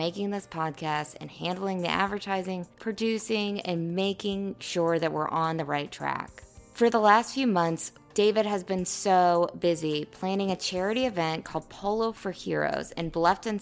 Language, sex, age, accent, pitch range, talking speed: English, female, 20-39, American, 165-205 Hz, 165 wpm